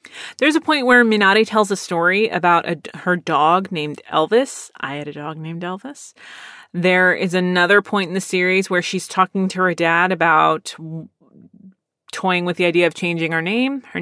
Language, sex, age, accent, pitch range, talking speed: English, female, 30-49, American, 170-225 Hz, 180 wpm